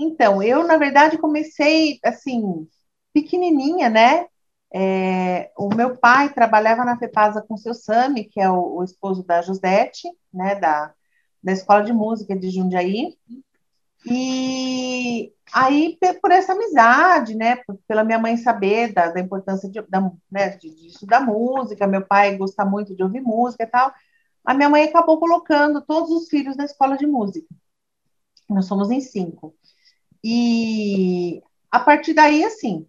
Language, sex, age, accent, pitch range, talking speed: Portuguese, female, 40-59, Brazilian, 200-295 Hz, 155 wpm